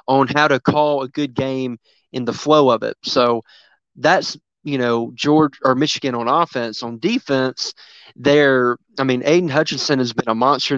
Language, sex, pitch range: English, male, 125-145 Hz